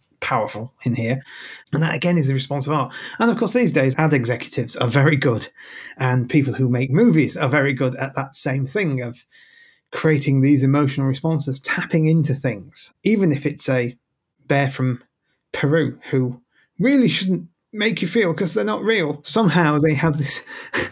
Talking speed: 180 wpm